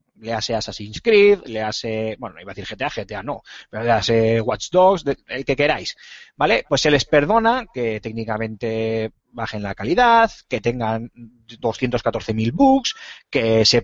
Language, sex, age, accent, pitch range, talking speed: Spanish, male, 30-49, Spanish, 115-155 Hz, 160 wpm